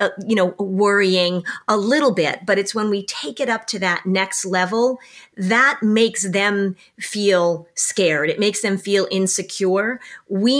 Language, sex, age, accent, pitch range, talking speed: English, female, 40-59, American, 175-220 Hz, 165 wpm